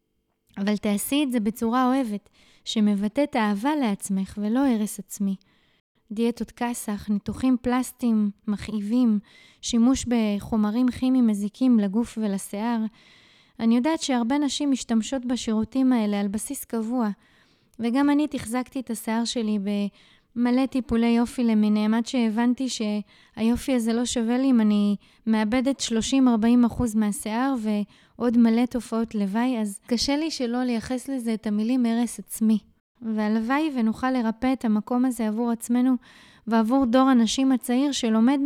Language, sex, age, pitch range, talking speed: Hebrew, female, 20-39, 215-255 Hz, 130 wpm